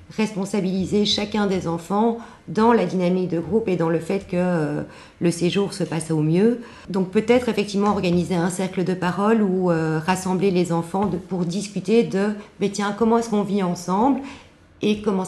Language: French